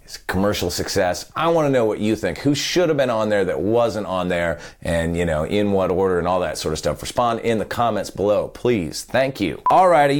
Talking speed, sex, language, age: 235 wpm, male, English, 30-49